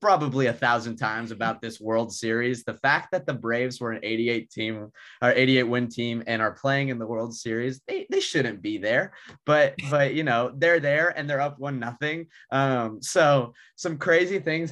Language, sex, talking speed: English, male, 200 wpm